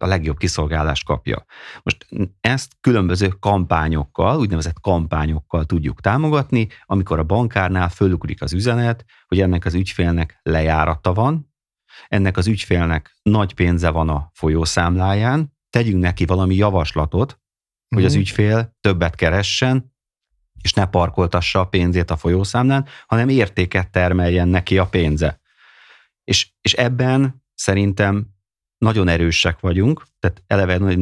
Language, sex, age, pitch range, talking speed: Hungarian, male, 30-49, 85-105 Hz, 125 wpm